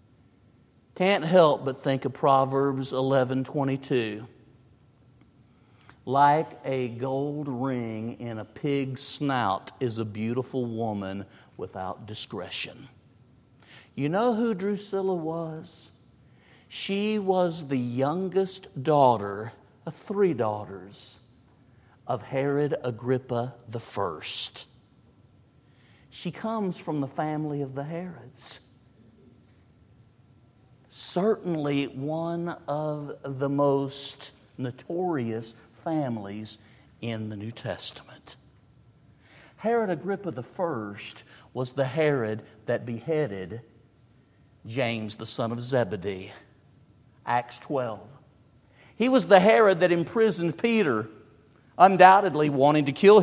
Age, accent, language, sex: 50-69, American, English, male